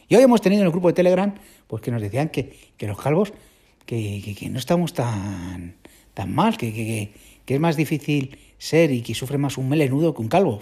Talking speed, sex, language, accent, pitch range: 230 wpm, male, Spanish, Spanish, 120-180 Hz